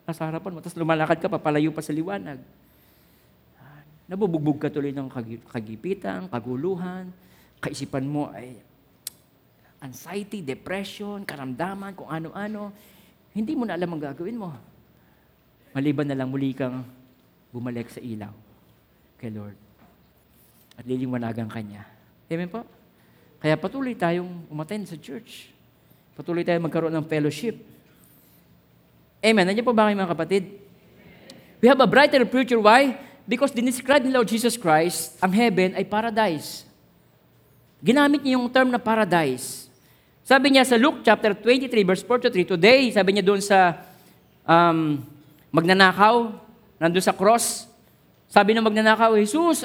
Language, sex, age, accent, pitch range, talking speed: Filipino, male, 50-69, native, 140-220 Hz, 130 wpm